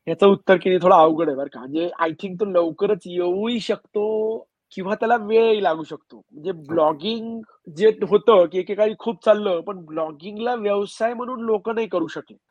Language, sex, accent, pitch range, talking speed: Marathi, male, native, 205-260 Hz, 175 wpm